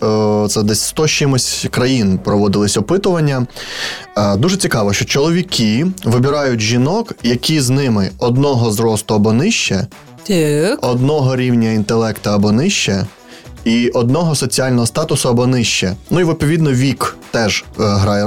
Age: 20-39